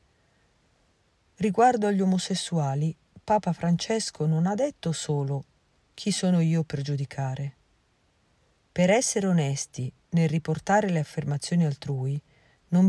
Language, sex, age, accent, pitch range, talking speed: Italian, female, 40-59, native, 145-190 Hz, 105 wpm